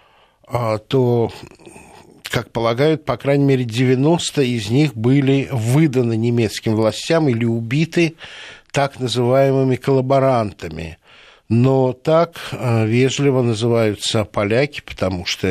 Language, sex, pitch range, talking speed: Russian, male, 110-140 Hz, 95 wpm